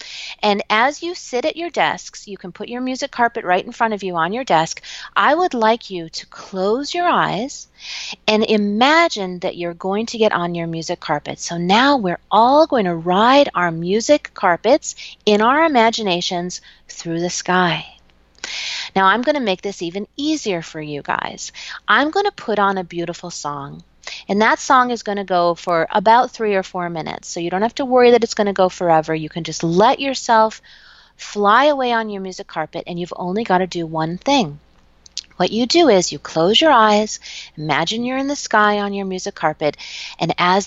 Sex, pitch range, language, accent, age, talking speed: female, 175-235 Hz, English, American, 40-59, 200 wpm